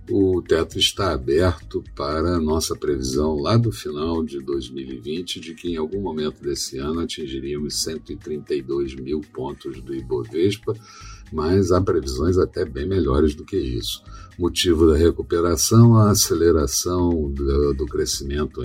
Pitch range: 70-100 Hz